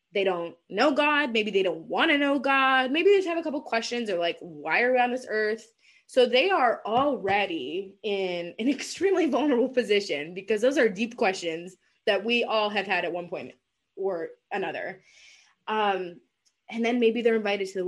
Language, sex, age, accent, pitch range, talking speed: English, female, 20-39, American, 190-265 Hz, 195 wpm